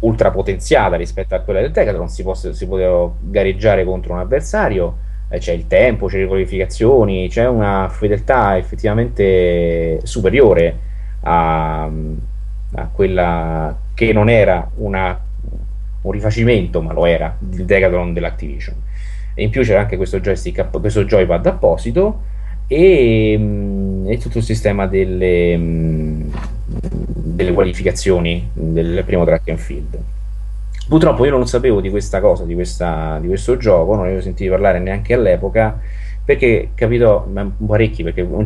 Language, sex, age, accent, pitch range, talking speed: Italian, male, 30-49, native, 85-110 Hz, 135 wpm